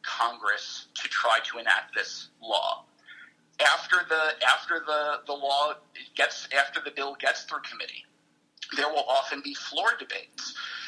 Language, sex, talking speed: English, male, 145 wpm